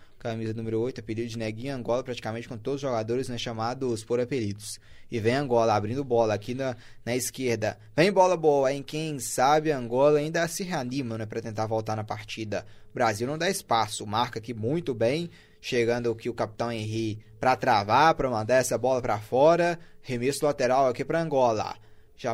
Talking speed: 185 wpm